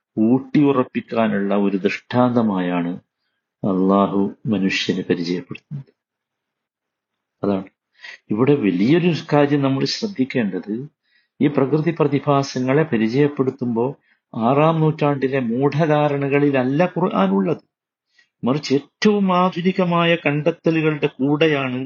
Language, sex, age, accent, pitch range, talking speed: Malayalam, male, 50-69, native, 115-155 Hz, 70 wpm